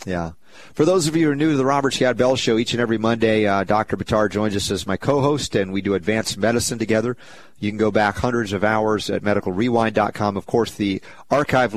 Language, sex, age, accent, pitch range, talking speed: English, male, 40-59, American, 95-110 Hz, 230 wpm